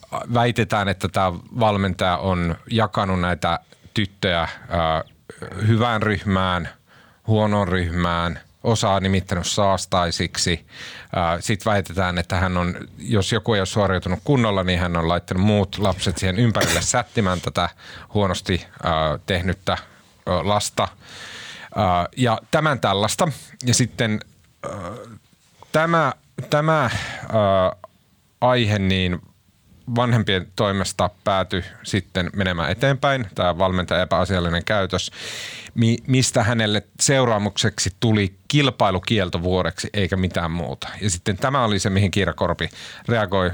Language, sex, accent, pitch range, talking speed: Finnish, male, native, 90-115 Hz, 110 wpm